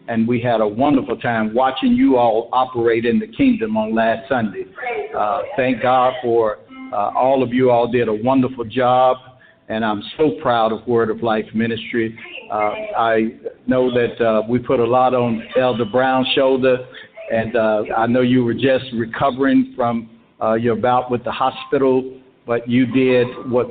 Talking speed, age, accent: 175 wpm, 60-79, American